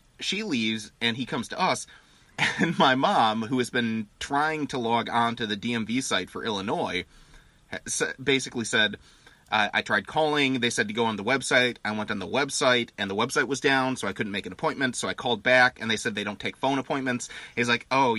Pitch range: 110-140 Hz